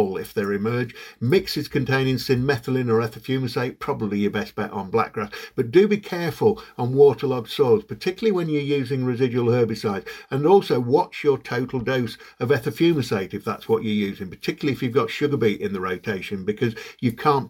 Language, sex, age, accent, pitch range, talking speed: English, male, 50-69, British, 110-150 Hz, 180 wpm